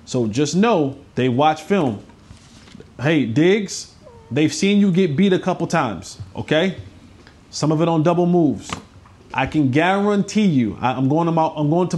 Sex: male